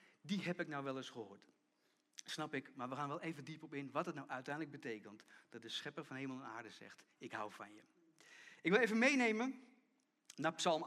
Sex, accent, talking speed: male, Dutch, 220 wpm